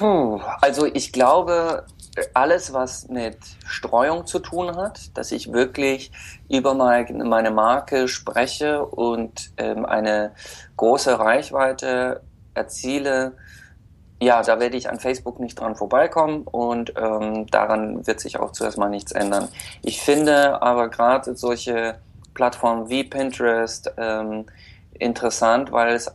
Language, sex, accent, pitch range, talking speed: German, male, German, 110-125 Hz, 120 wpm